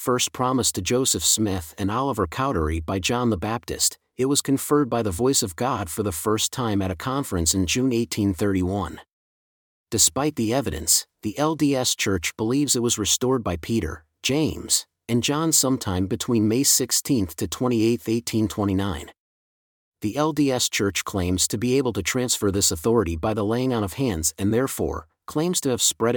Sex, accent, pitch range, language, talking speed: male, American, 100-130 Hz, English, 170 wpm